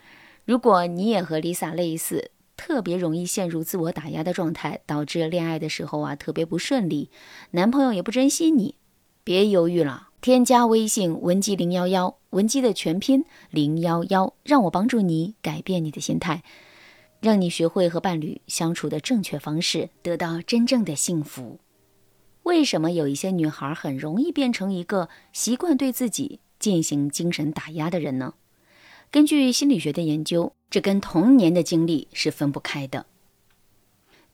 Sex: female